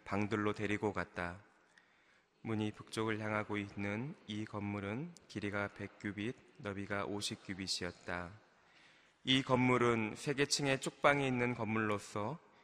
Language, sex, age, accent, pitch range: Korean, male, 20-39, native, 100-115 Hz